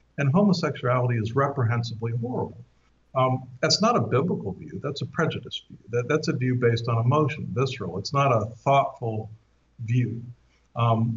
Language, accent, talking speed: English, American, 155 wpm